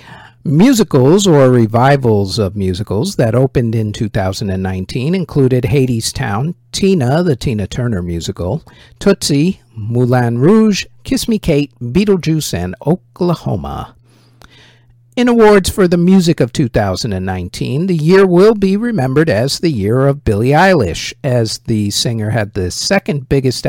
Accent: American